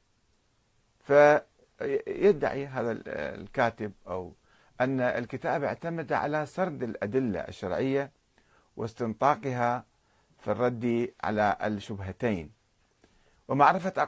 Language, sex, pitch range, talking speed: Arabic, male, 105-145 Hz, 70 wpm